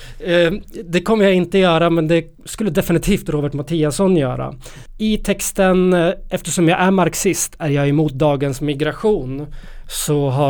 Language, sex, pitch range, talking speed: Swedish, male, 140-175 Hz, 145 wpm